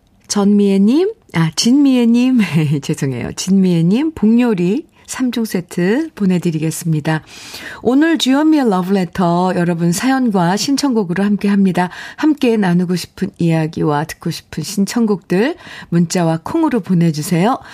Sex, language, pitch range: female, Korean, 170-220 Hz